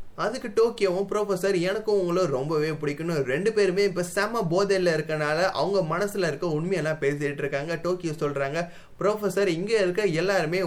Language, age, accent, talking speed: Tamil, 20-39, native, 140 wpm